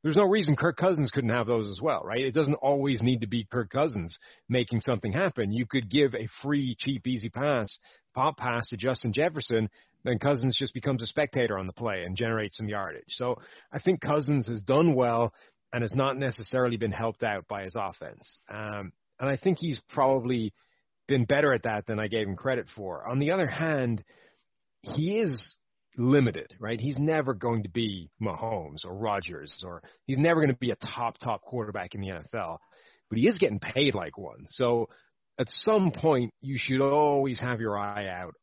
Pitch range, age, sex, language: 110-135 Hz, 30-49, male, English